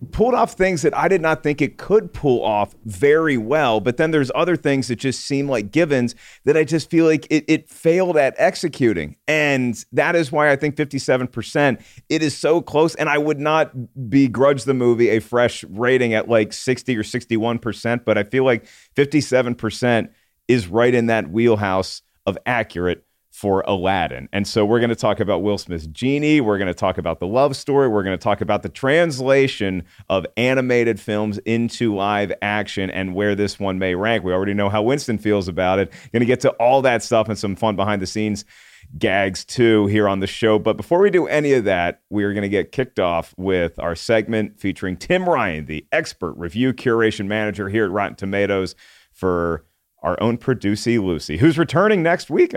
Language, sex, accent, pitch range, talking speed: English, male, American, 100-140 Hz, 205 wpm